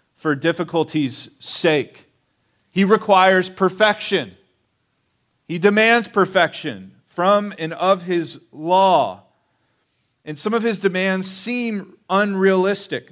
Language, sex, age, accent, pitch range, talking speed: English, male, 40-59, American, 145-195 Hz, 95 wpm